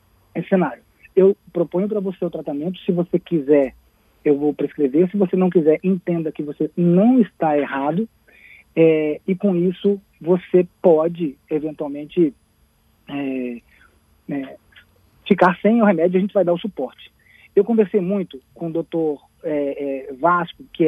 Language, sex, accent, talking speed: Portuguese, male, Brazilian, 150 wpm